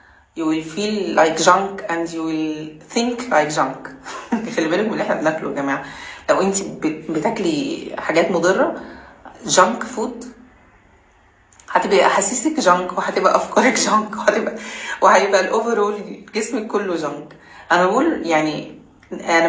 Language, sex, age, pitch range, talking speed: Arabic, female, 30-49, 155-230 Hz, 125 wpm